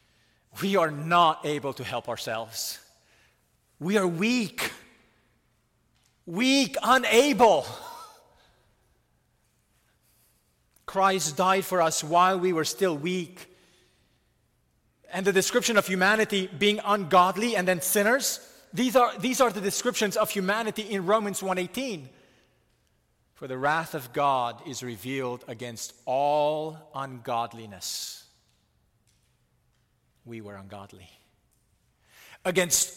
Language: English